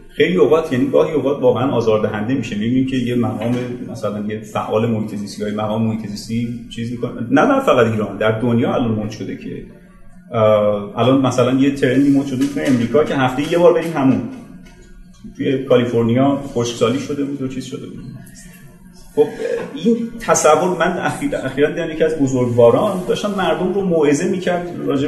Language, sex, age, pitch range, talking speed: Persian, male, 30-49, 125-165 Hz, 160 wpm